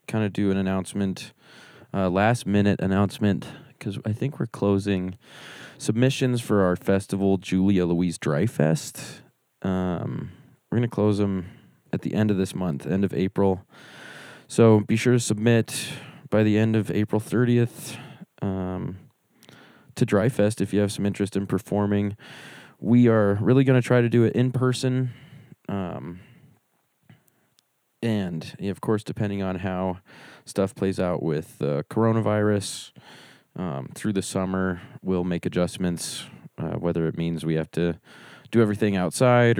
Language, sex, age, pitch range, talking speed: English, male, 20-39, 95-115 Hz, 150 wpm